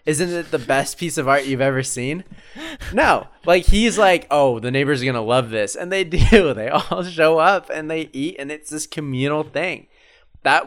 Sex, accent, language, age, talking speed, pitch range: male, American, English, 20-39, 215 wpm, 110-145 Hz